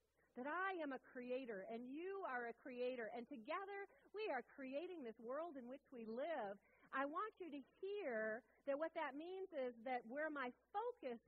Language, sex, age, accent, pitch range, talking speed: English, female, 40-59, American, 205-310 Hz, 185 wpm